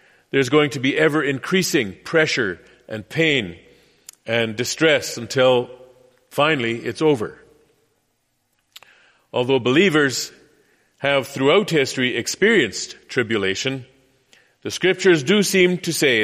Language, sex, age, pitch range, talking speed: English, male, 40-59, 130-155 Hz, 105 wpm